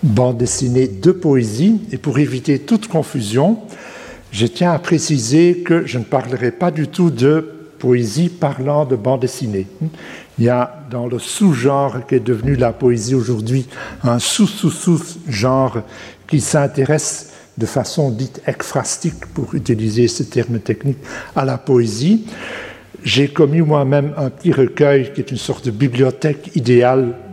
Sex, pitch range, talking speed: male, 125-155 Hz, 145 wpm